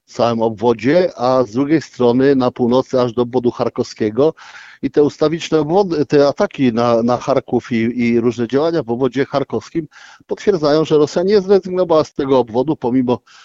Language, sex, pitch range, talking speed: Polish, male, 120-150 Hz, 170 wpm